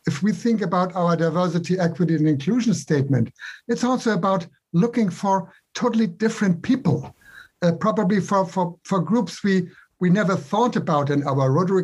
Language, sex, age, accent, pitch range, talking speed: Hindi, male, 60-79, German, 145-185 Hz, 160 wpm